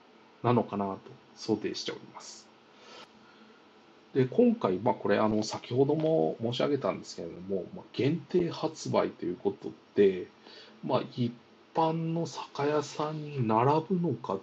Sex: male